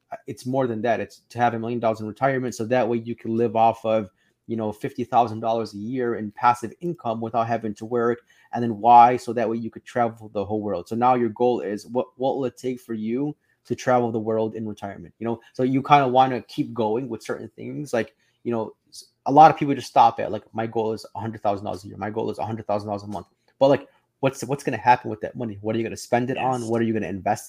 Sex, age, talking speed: male, 20-39, 275 wpm